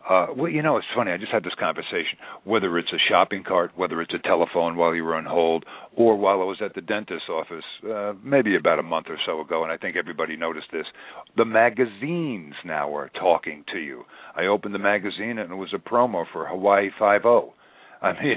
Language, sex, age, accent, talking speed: English, male, 50-69, American, 220 wpm